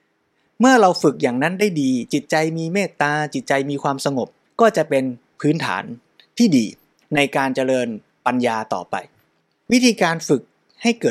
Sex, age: male, 20-39